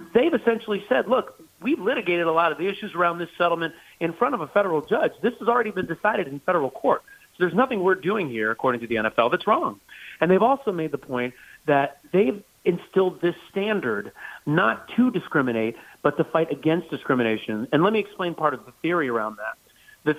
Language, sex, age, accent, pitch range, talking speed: English, male, 40-59, American, 145-205 Hz, 210 wpm